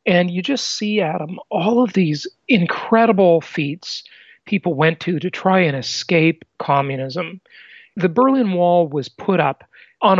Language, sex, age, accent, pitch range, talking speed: English, male, 40-59, American, 150-195 Hz, 145 wpm